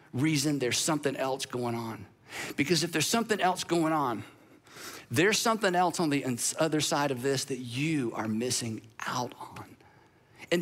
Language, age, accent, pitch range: English, 50-69, American, 165-225 Hz